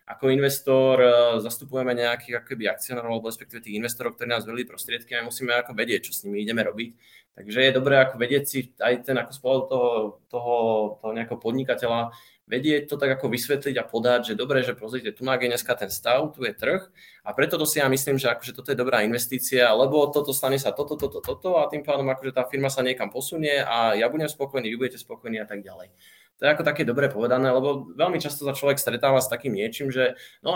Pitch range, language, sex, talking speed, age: 120-140 Hz, Slovak, male, 210 wpm, 20-39